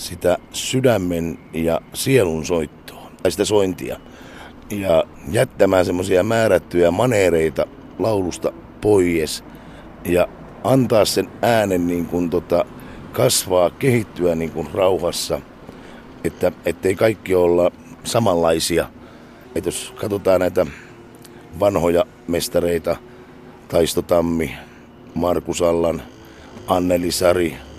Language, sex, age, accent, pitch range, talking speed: Finnish, male, 50-69, native, 85-105 Hz, 85 wpm